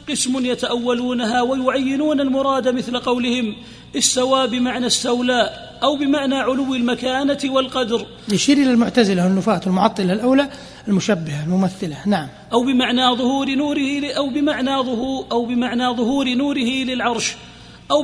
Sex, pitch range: male, 245-270 Hz